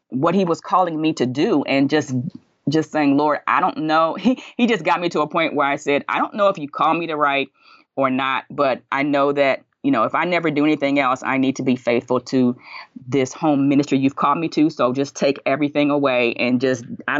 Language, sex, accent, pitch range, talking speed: English, female, American, 135-170 Hz, 245 wpm